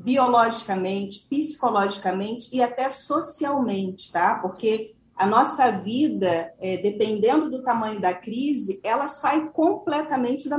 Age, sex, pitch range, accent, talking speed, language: 40-59, female, 215-275 Hz, Brazilian, 110 wpm, Portuguese